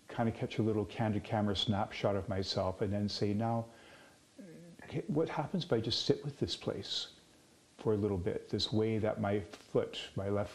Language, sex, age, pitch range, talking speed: English, male, 50-69, 100-115 Hz, 195 wpm